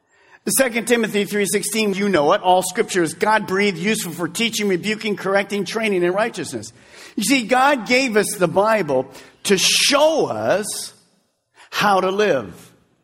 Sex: male